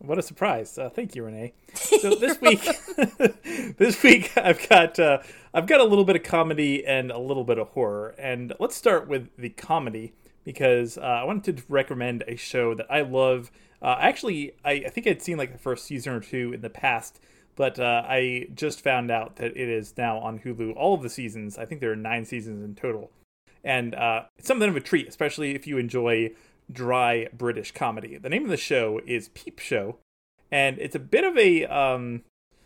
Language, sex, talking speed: English, male, 210 wpm